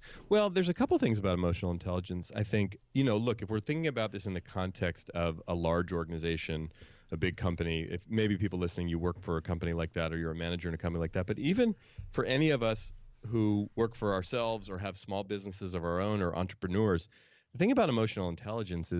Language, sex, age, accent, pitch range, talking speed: English, male, 30-49, American, 85-110 Hz, 225 wpm